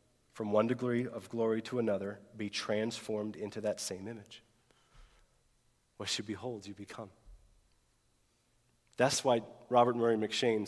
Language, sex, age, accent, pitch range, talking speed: English, male, 40-59, American, 95-115 Hz, 130 wpm